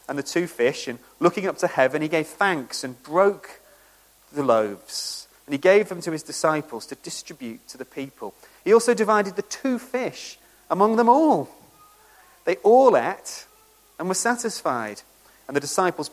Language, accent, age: English, British, 40-59